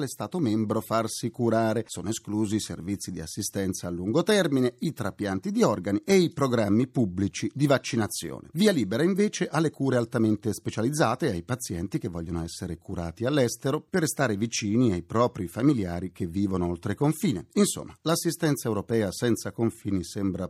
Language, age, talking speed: Italian, 40-59, 155 wpm